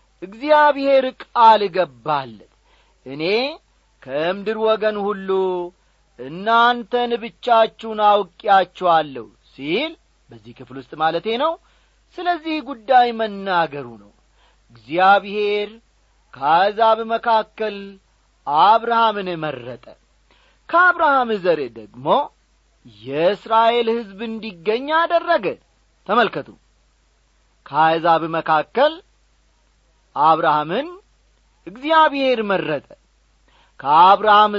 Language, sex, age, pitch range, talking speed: Amharic, male, 40-59, 165-240 Hz, 65 wpm